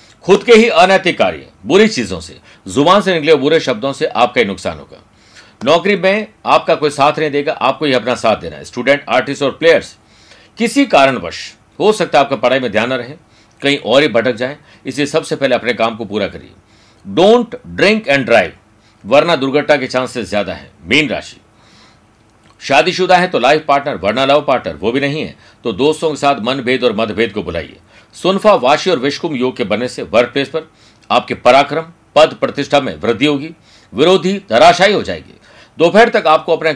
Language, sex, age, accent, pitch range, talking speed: Hindi, male, 60-79, native, 115-160 Hz, 190 wpm